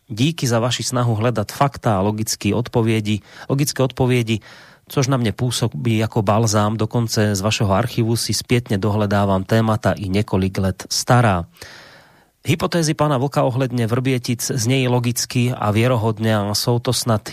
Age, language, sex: 30-49, Slovak, male